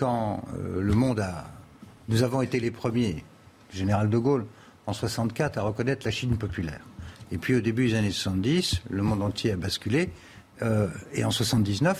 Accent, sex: French, male